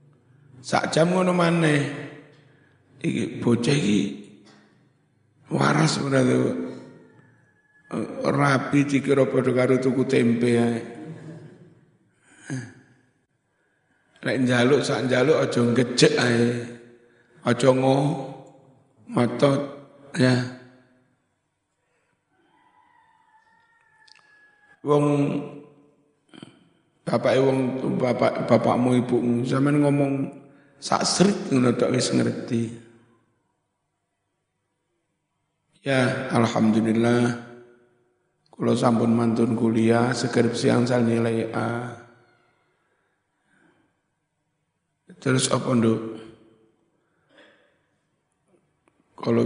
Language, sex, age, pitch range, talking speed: Indonesian, male, 60-79, 120-145 Hz, 60 wpm